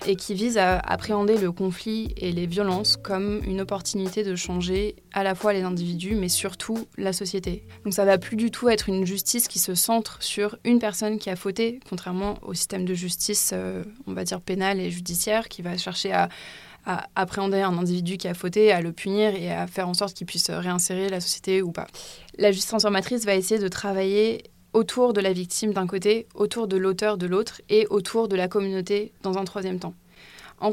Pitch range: 185-215 Hz